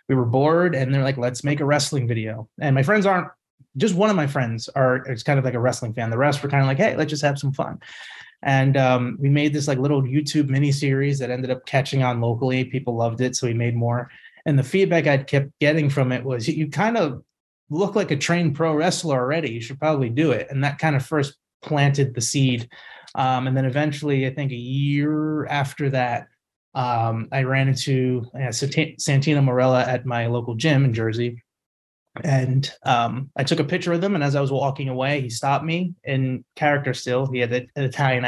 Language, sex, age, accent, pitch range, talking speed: English, male, 20-39, American, 125-150 Hz, 225 wpm